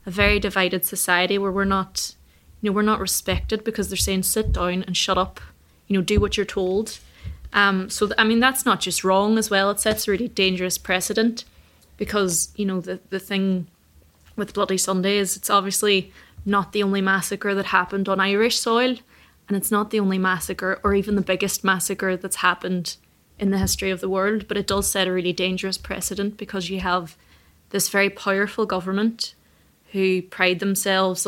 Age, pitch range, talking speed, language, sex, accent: 20-39, 185-200 Hz, 190 wpm, English, female, Irish